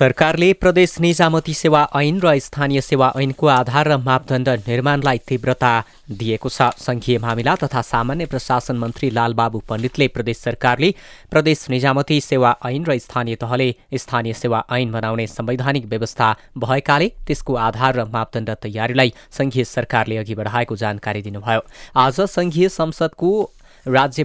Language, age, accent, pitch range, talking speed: English, 20-39, Indian, 115-145 Hz, 110 wpm